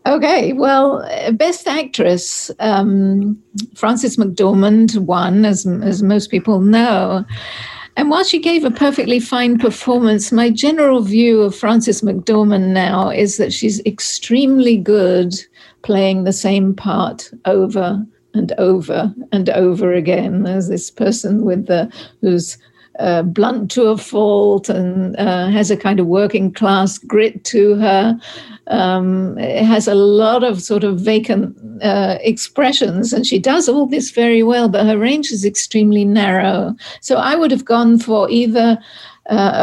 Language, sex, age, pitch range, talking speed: English, female, 60-79, 190-230 Hz, 145 wpm